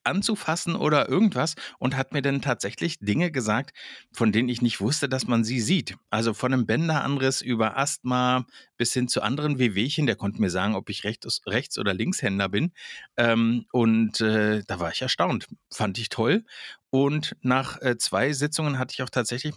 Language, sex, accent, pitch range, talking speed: German, male, German, 110-135 Hz, 185 wpm